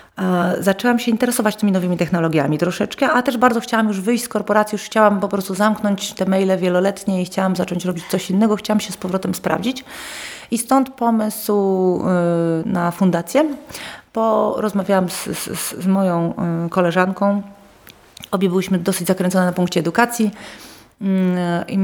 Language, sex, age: Polish, female, 40-59